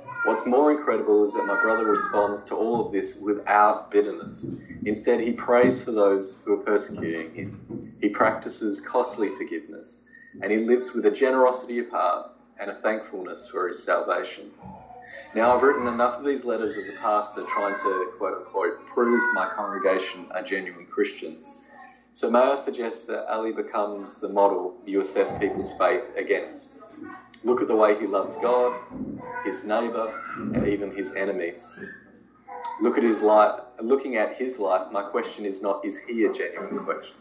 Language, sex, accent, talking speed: English, male, Australian, 170 wpm